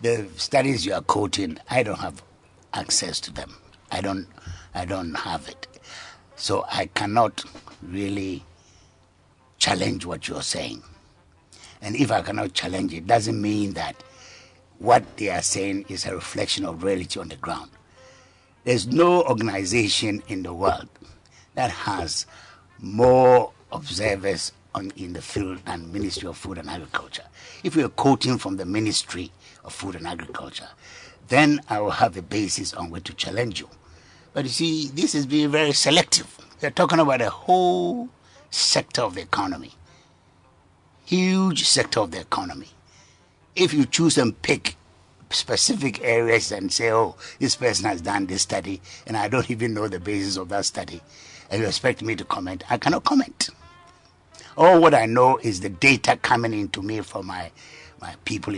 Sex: male